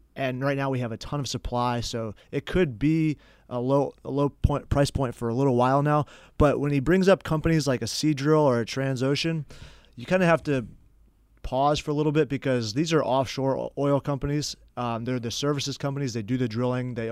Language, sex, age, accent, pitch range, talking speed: English, male, 30-49, American, 125-145 Hz, 225 wpm